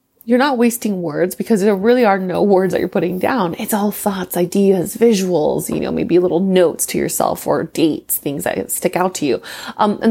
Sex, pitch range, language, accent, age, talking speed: female, 170-220 Hz, English, American, 30-49, 215 wpm